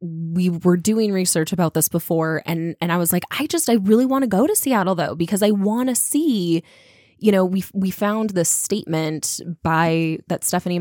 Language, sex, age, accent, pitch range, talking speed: English, female, 10-29, American, 165-195 Hz, 205 wpm